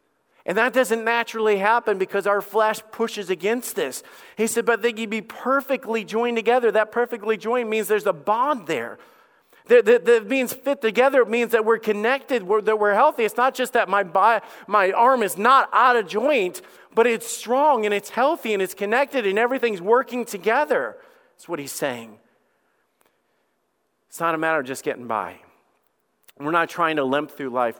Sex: male